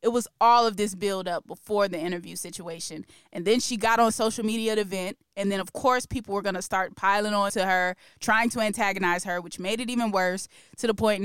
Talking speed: 240 wpm